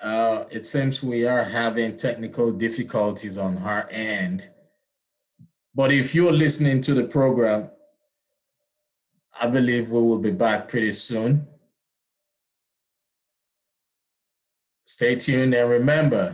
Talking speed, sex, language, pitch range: 110 wpm, male, English, 115-190 Hz